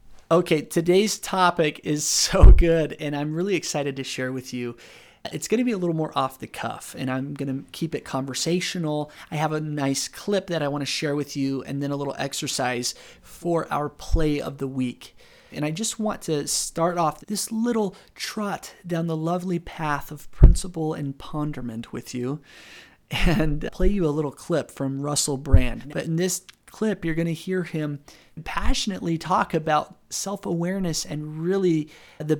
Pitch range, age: 135-175 Hz, 30-49